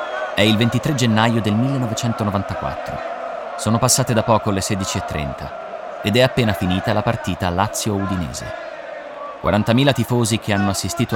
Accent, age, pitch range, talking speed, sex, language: native, 30-49, 85-115 Hz, 130 wpm, male, Italian